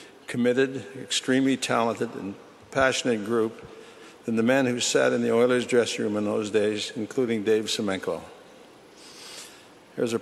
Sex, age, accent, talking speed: male, 60-79, American, 140 wpm